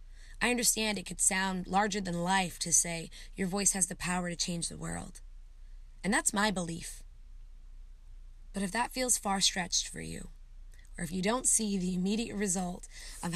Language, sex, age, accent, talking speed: English, female, 20-39, American, 180 wpm